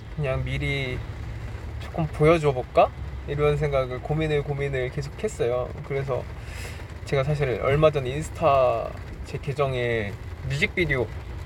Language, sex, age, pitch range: Korean, male, 20-39, 105-140 Hz